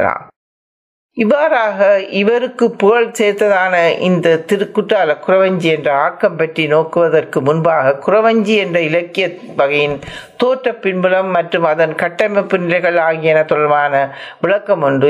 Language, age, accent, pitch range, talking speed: Tamil, 60-79, native, 165-220 Hz, 95 wpm